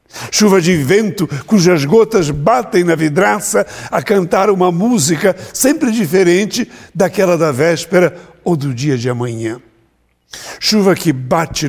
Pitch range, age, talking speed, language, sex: 140-190 Hz, 60-79, 130 wpm, Portuguese, male